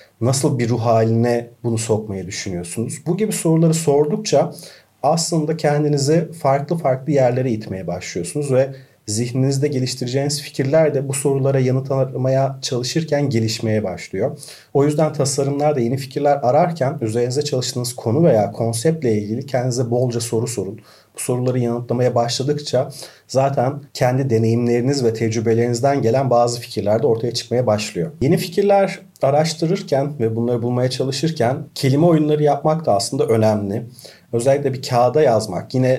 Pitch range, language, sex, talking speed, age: 115-145 Hz, Turkish, male, 130 wpm, 40-59